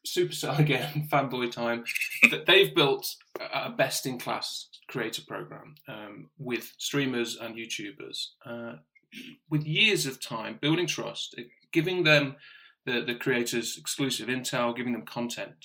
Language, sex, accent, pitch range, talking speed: English, male, British, 120-150 Hz, 125 wpm